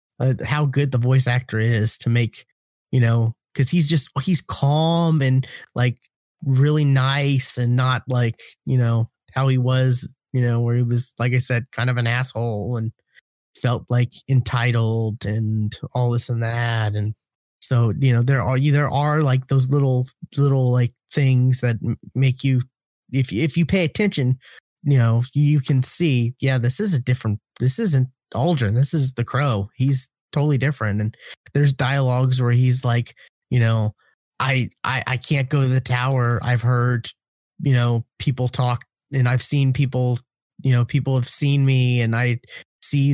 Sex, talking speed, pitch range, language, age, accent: male, 180 wpm, 120-135 Hz, English, 20-39, American